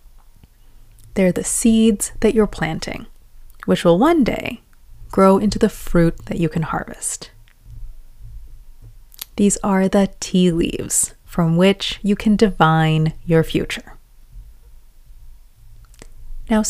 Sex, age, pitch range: female, 30-49, 150-220 Hz